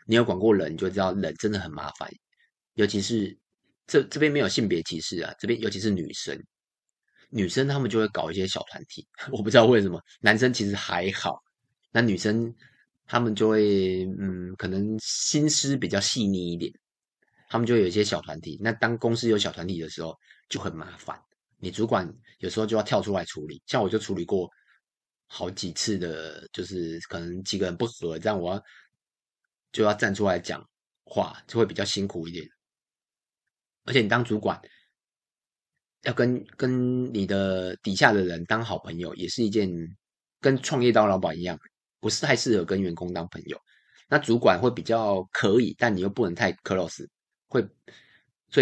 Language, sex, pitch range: Chinese, male, 90-115 Hz